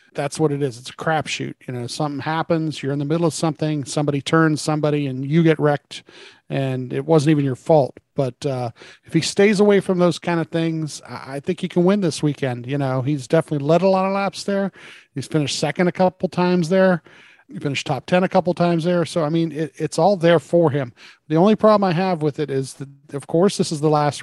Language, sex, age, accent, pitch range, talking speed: English, male, 40-59, American, 140-165 Hz, 240 wpm